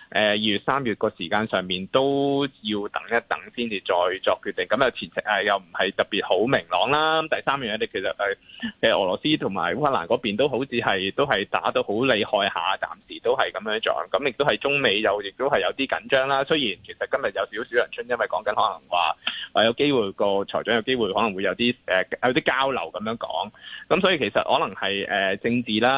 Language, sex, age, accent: Chinese, male, 20-39, native